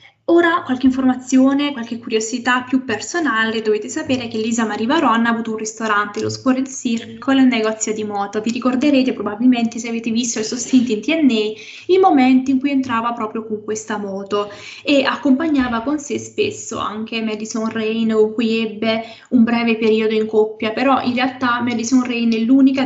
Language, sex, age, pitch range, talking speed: Italian, female, 20-39, 220-255 Hz, 170 wpm